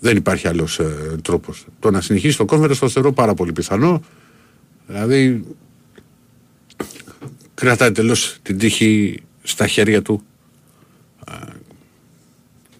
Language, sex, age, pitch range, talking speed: Greek, male, 50-69, 90-115 Hz, 115 wpm